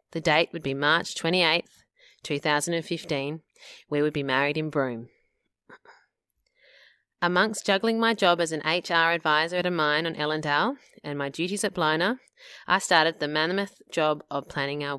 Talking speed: 165 wpm